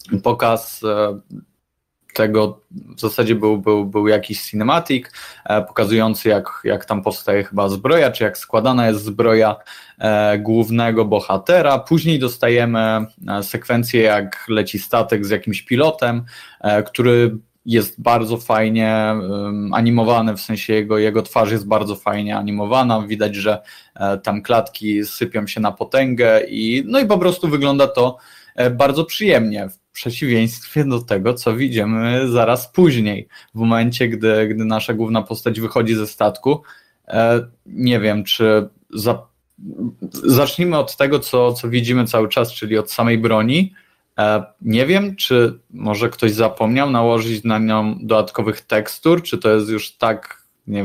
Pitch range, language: 105-120 Hz, Polish